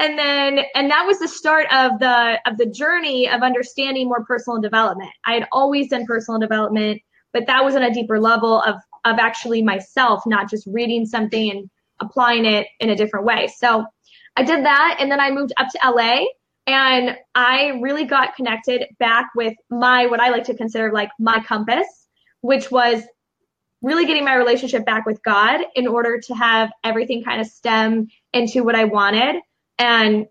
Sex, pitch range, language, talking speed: female, 225-260 Hz, English, 185 wpm